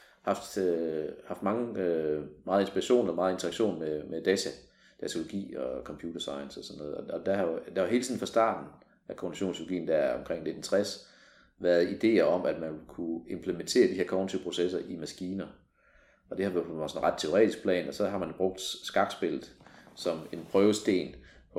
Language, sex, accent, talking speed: Danish, male, native, 180 wpm